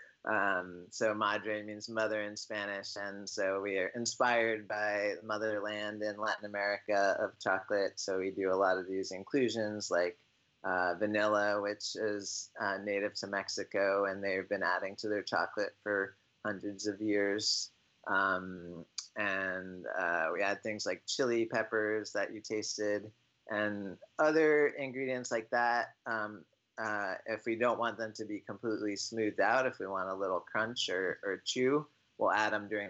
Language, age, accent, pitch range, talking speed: English, 30-49, American, 95-110 Hz, 160 wpm